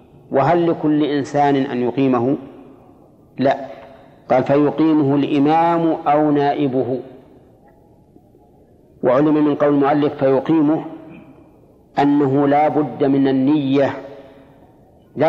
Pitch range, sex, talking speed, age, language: 135-155 Hz, male, 90 wpm, 40-59, Arabic